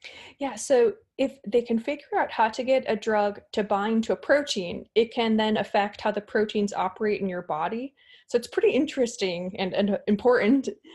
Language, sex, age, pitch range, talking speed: English, female, 20-39, 200-240 Hz, 190 wpm